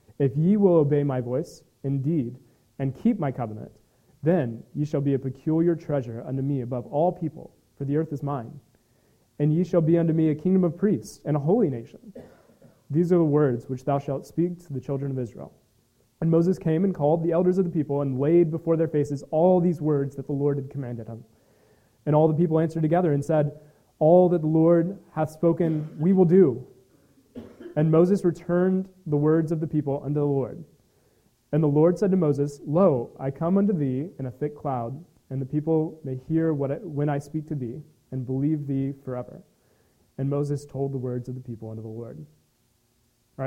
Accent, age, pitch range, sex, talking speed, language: American, 30-49, 135-160 Hz, male, 205 wpm, English